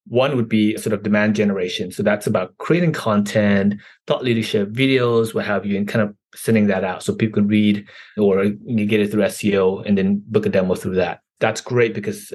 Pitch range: 105-115 Hz